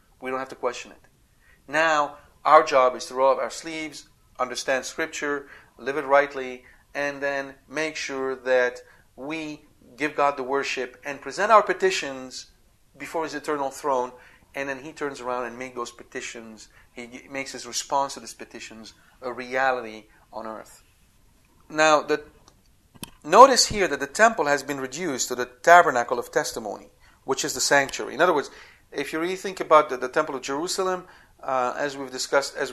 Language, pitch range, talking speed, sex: English, 125-150 Hz, 170 wpm, male